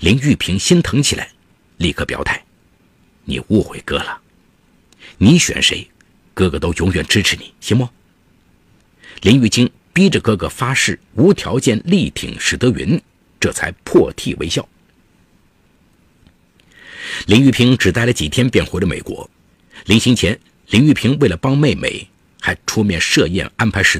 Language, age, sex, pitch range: Chinese, 50-69, male, 95-130 Hz